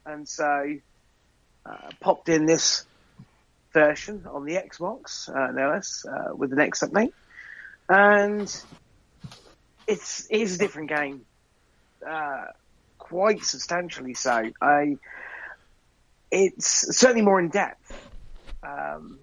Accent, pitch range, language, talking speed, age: British, 140-170 Hz, English, 110 wpm, 40-59